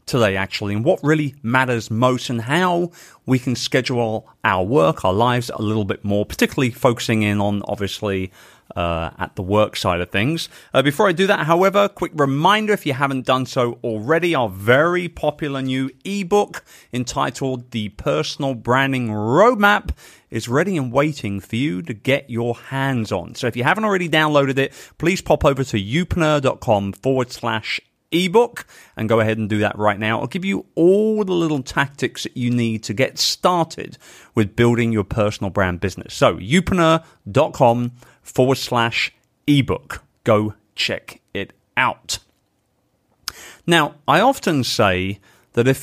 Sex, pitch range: male, 105-150 Hz